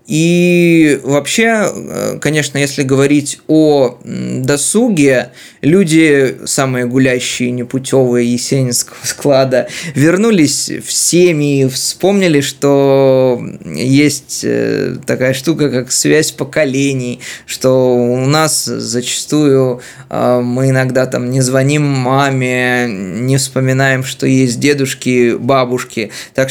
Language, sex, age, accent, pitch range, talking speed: Russian, male, 20-39, native, 125-150 Hz, 95 wpm